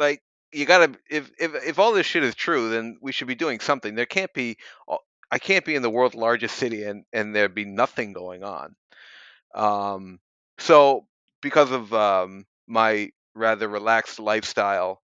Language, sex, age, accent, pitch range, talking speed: English, male, 40-59, American, 100-120 Hz, 180 wpm